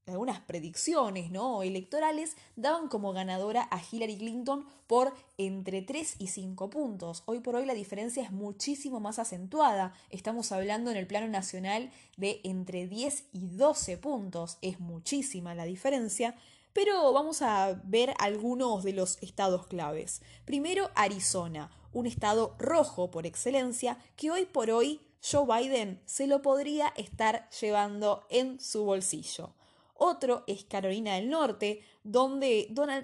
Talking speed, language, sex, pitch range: 140 wpm, Spanish, female, 195-265 Hz